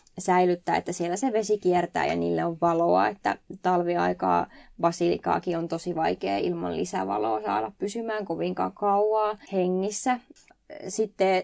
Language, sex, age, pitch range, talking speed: Finnish, female, 20-39, 175-215 Hz, 125 wpm